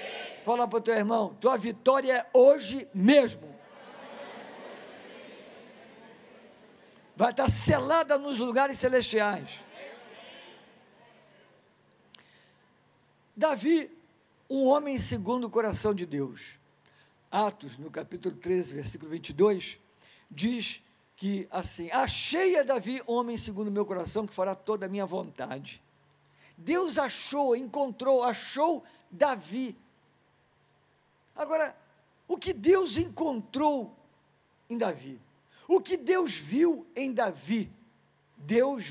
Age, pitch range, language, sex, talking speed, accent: 50-69, 195-270 Hz, Portuguese, male, 100 wpm, Brazilian